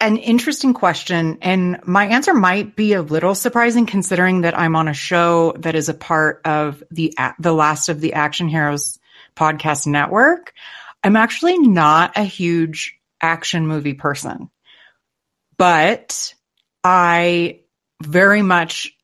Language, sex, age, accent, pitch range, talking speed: English, female, 30-49, American, 155-205 Hz, 135 wpm